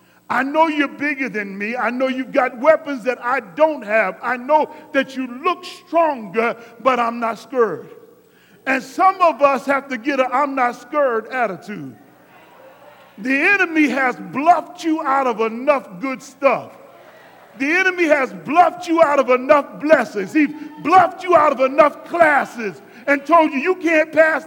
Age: 40-59